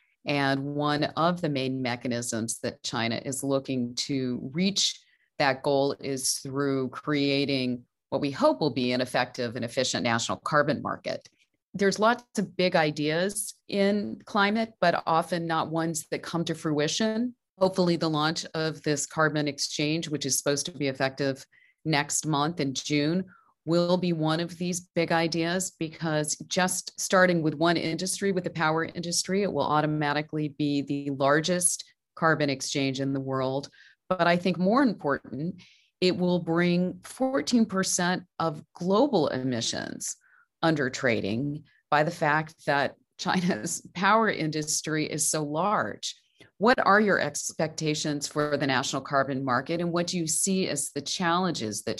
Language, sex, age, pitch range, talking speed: English, female, 30-49, 140-180 Hz, 150 wpm